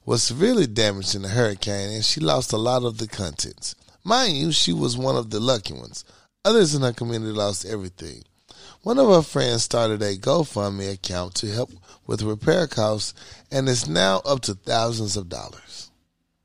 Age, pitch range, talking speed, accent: 30-49, 105-145 Hz, 180 wpm, American